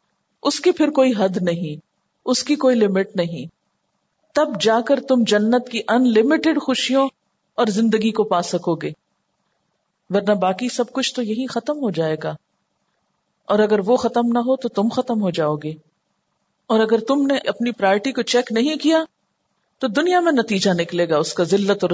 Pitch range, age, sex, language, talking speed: 180-245 Hz, 40-59, female, Urdu, 185 wpm